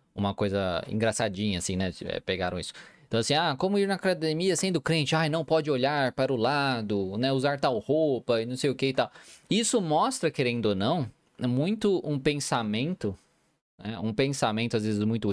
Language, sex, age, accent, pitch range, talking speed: Portuguese, male, 20-39, Brazilian, 105-155 Hz, 190 wpm